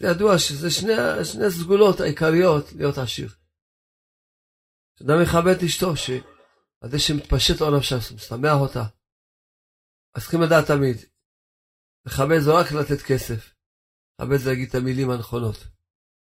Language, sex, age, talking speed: Hebrew, male, 40-59, 125 wpm